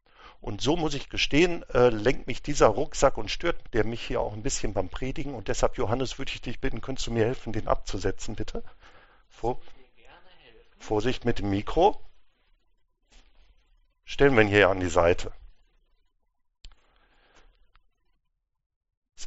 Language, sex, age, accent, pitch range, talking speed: English, male, 50-69, German, 110-145 Hz, 145 wpm